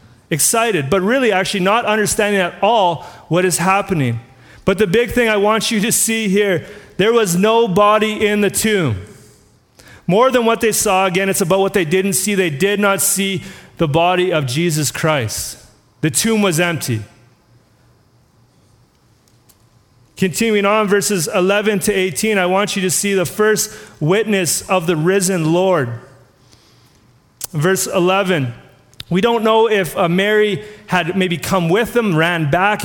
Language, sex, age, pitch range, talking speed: English, male, 30-49, 160-205 Hz, 155 wpm